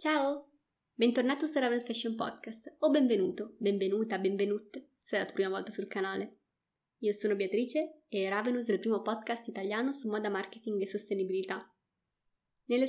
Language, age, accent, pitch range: Italian, 20-39, native, 195-230 Hz